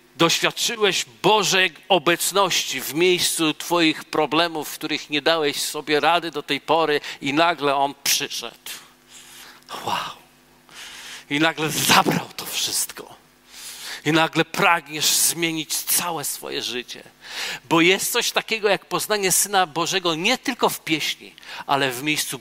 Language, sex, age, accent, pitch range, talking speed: Polish, male, 40-59, native, 135-180 Hz, 130 wpm